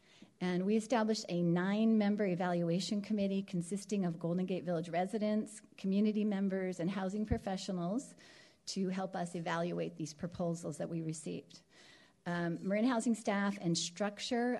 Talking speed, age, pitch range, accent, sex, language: 135 wpm, 40-59, 175-205 Hz, American, female, English